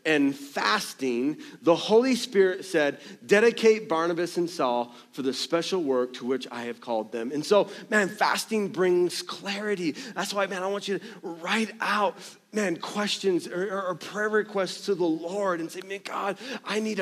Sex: male